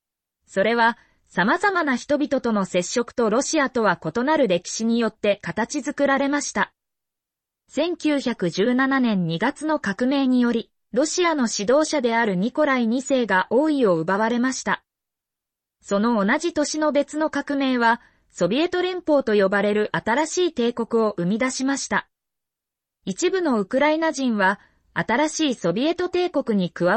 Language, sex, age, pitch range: Japanese, female, 20-39, 210-300 Hz